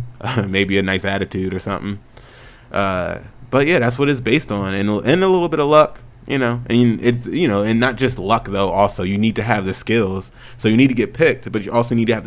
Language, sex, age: English, male, 20-39